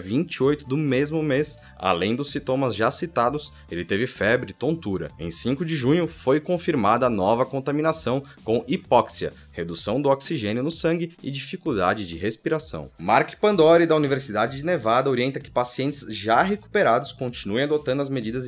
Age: 20-39